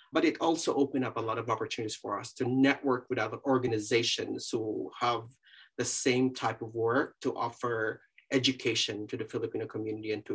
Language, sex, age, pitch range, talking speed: English, male, 30-49, 115-135 Hz, 185 wpm